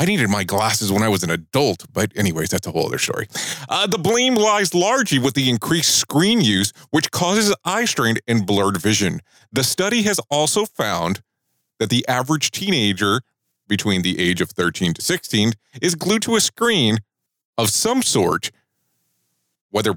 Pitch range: 100-160 Hz